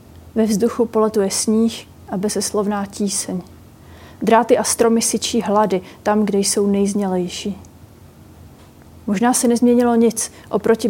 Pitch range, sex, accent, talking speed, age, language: 205-225 Hz, female, native, 115 wpm, 30-49, Czech